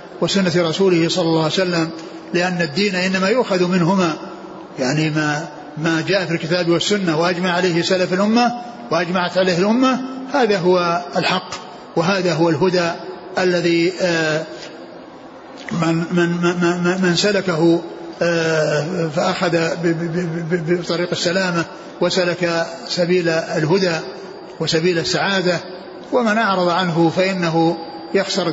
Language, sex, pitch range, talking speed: Arabic, male, 165-190 Hz, 95 wpm